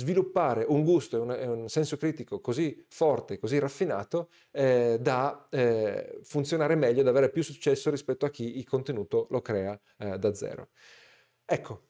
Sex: male